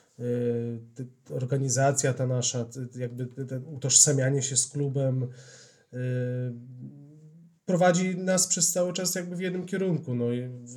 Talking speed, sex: 115 wpm, male